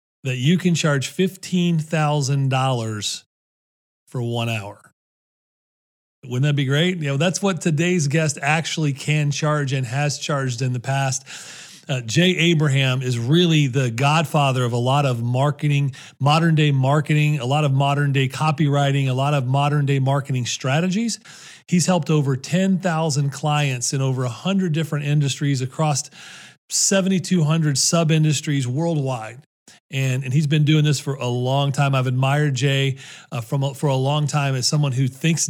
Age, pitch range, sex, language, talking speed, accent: 40-59, 130-155 Hz, male, English, 150 wpm, American